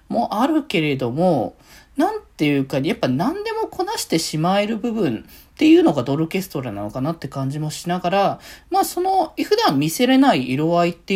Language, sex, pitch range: Japanese, male, 130-205 Hz